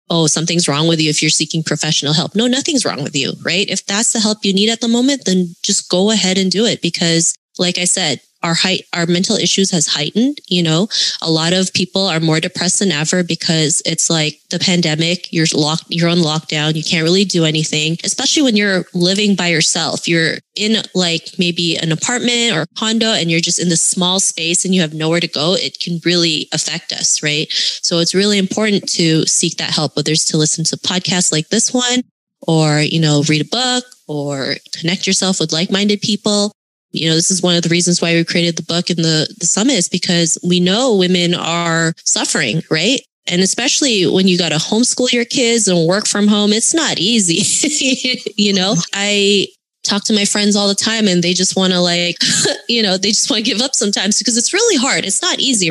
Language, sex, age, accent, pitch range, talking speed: English, female, 20-39, American, 165-205 Hz, 220 wpm